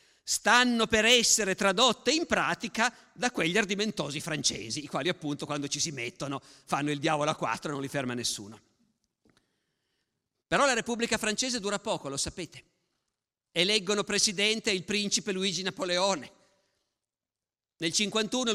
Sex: male